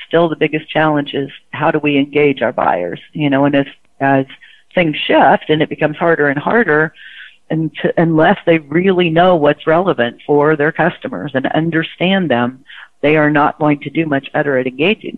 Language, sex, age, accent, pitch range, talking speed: English, female, 40-59, American, 140-165 Hz, 190 wpm